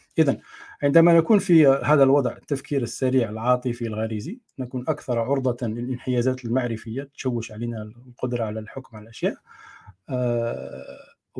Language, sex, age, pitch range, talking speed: Arabic, male, 40-59, 115-150 Hz, 120 wpm